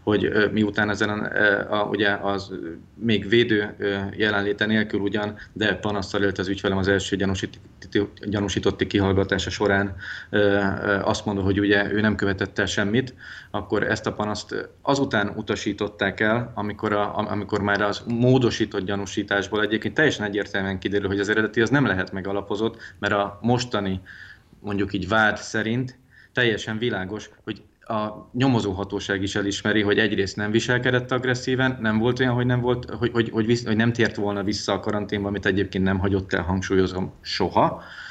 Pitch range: 100-110 Hz